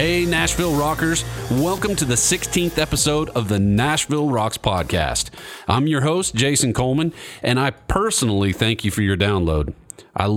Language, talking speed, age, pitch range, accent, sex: English, 155 wpm, 40-59, 100-140 Hz, American, male